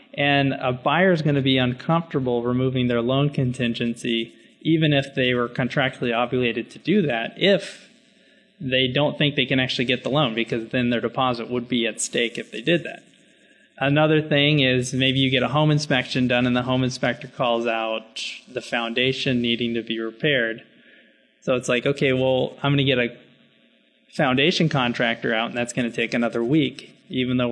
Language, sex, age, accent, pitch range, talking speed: English, male, 20-39, American, 120-140 Hz, 190 wpm